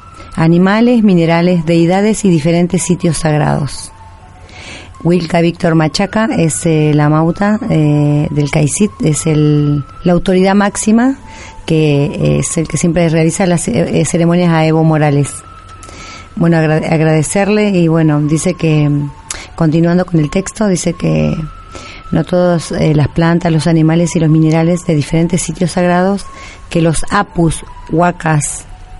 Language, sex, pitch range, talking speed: Spanish, female, 155-180 Hz, 135 wpm